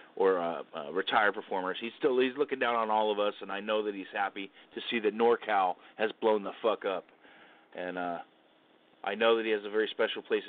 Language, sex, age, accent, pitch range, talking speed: English, male, 30-49, American, 95-125 Hz, 235 wpm